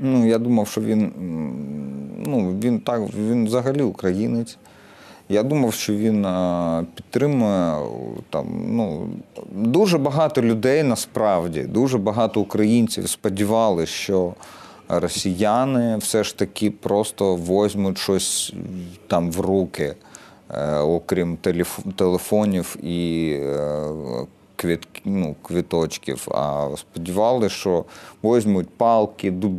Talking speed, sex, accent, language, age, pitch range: 100 wpm, male, native, Ukrainian, 40-59, 90-115 Hz